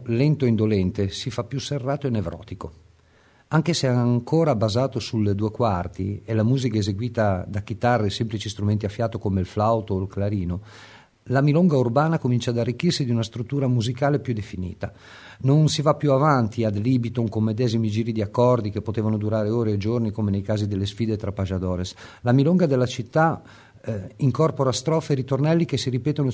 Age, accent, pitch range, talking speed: 50-69, native, 105-135 Hz, 185 wpm